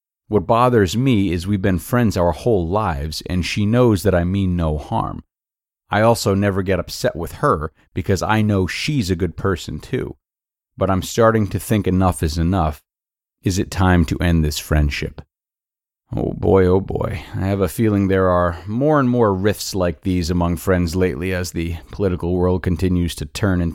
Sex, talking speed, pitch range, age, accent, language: male, 190 wpm, 85-105 Hz, 30-49, American, English